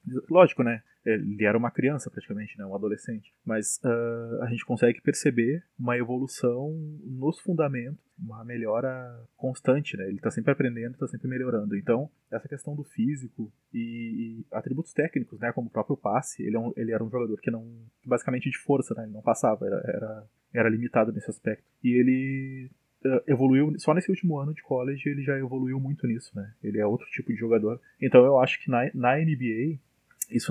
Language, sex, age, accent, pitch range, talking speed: Portuguese, male, 20-39, Brazilian, 110-135 Hz, 190 wpm